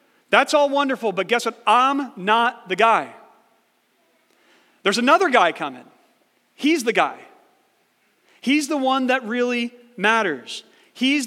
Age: 40-59